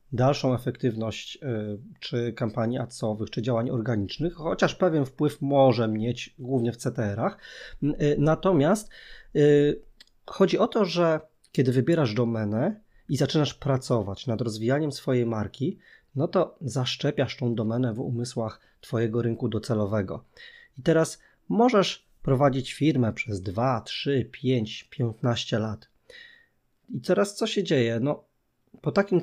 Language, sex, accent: Polish, male, native